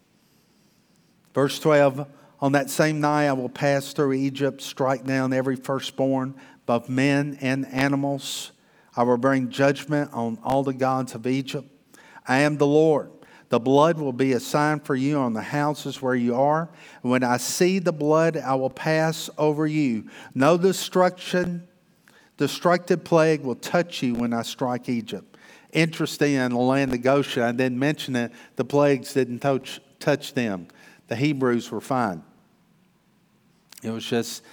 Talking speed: 160 wpm